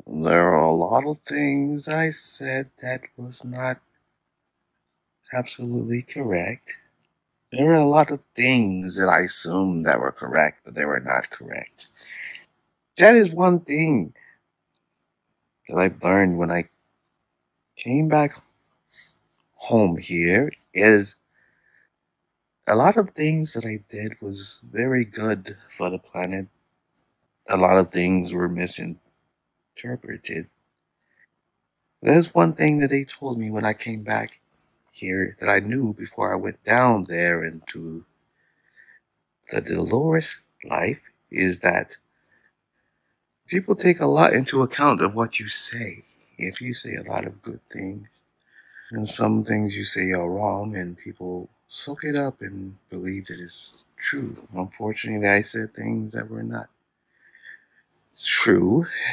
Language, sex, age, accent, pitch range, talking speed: English, male, 60-79, American, 95-135 Hz, 135 wpm